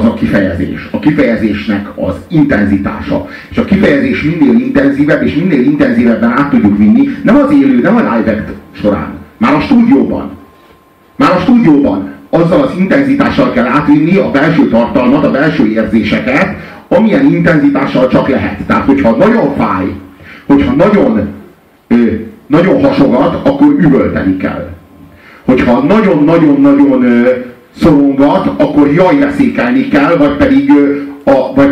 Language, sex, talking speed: Hungarian, male, 125 wpm